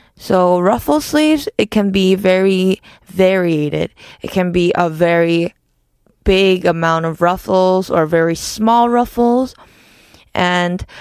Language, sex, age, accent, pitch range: Korean, female, 20-39, American, 180-230 Hz